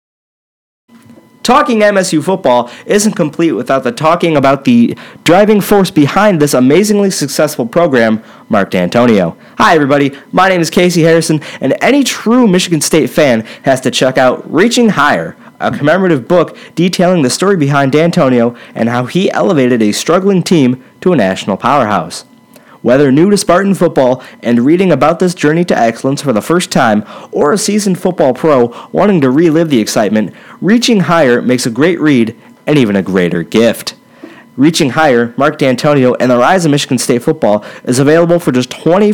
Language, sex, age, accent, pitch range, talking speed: English, male, 30-49, American, 135-190 Hz, 165 wpm